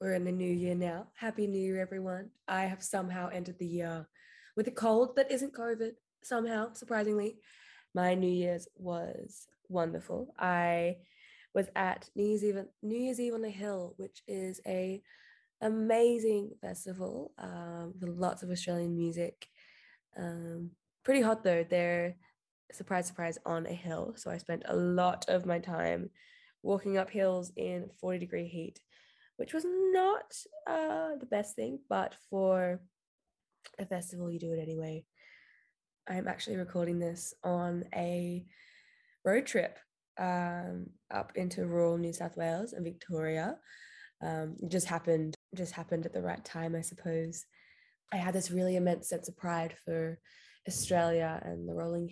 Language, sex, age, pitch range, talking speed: English, female, 10-29, 170-210 Hz, 150 wpm